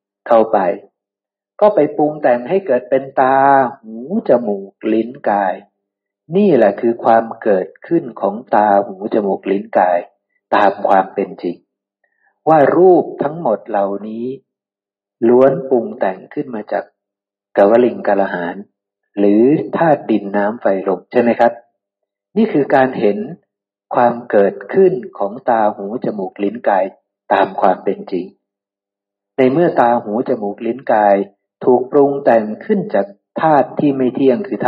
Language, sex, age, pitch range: Thai, male, 60-79, 100-130 Hz